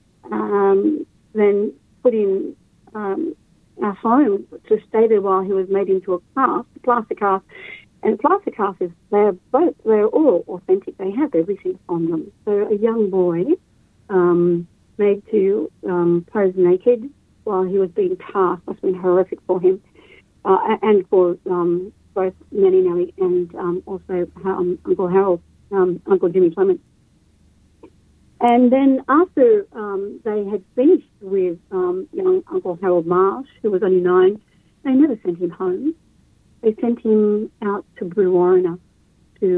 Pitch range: 190-245 Hz